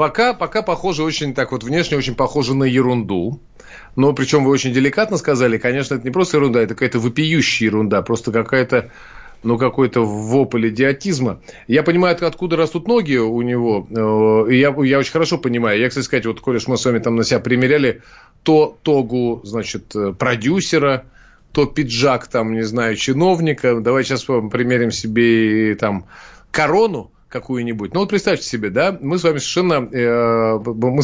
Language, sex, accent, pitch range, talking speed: Russian, male, native, 115-150 Hz, 165 wpm